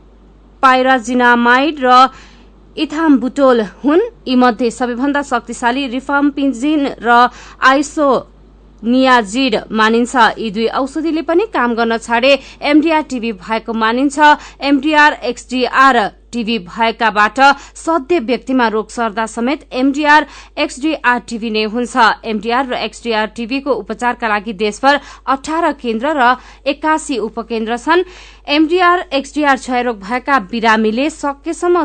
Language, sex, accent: German, female, Indian